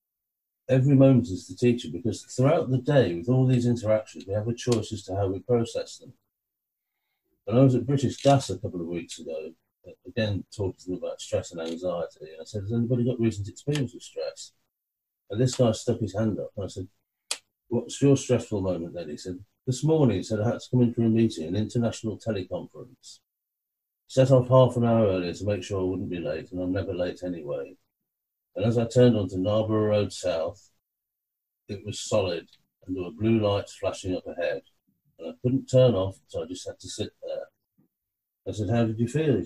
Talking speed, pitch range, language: 215 wpm, 95-130 Hz, English